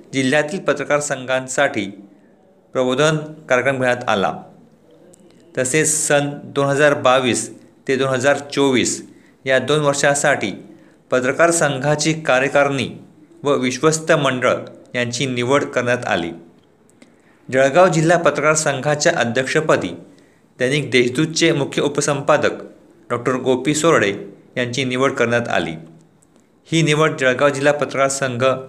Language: Marathi